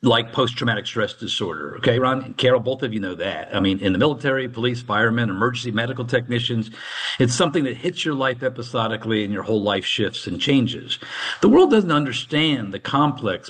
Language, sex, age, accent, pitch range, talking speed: English, male, 50-69, American, 115-145 Hz, 190 wpm